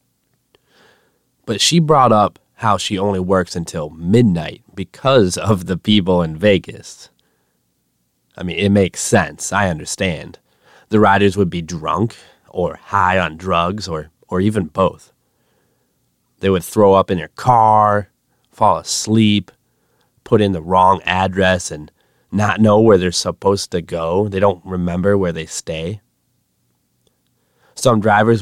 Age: 30-49